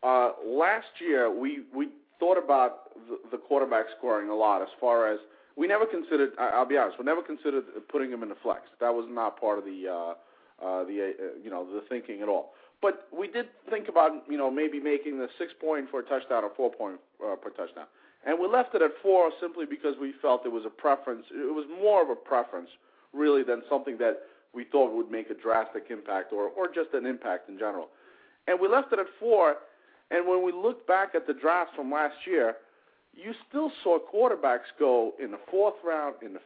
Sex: male